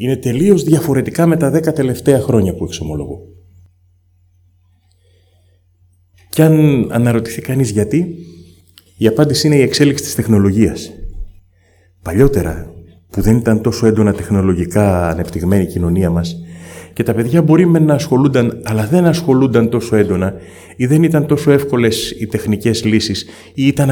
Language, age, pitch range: Greek, 30-49, 90-140 Hz